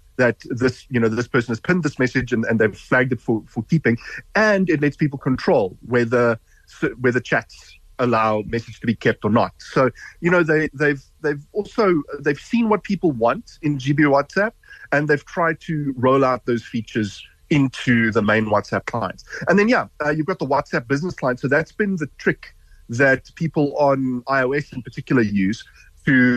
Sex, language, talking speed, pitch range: male, English, 190 wpm, 115-150 Hz